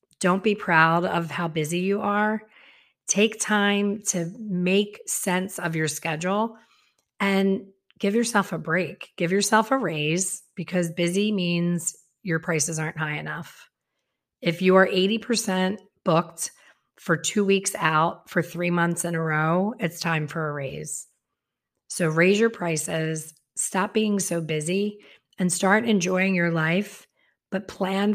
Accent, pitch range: American, 165-200 Hz